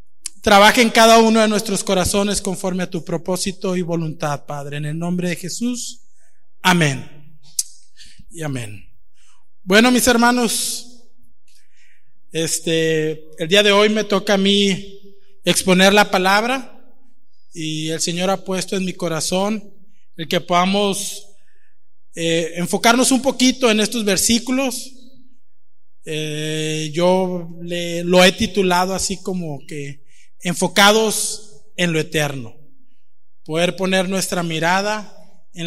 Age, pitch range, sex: 20-39, 170-220 Hz, male